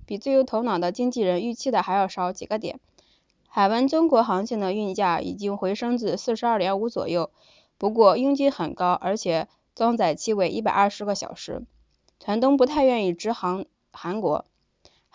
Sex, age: female, 20-39